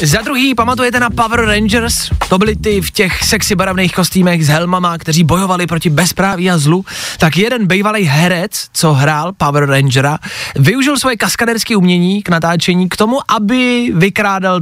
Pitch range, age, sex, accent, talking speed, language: 135-200 Hz, 20-39, male, native, 165 wpm, Czech